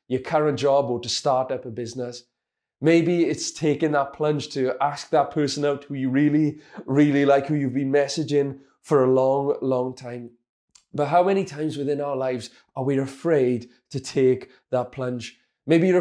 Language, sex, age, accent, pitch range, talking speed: English, male, 30-49, British, 125-150 Hz, 185 wpm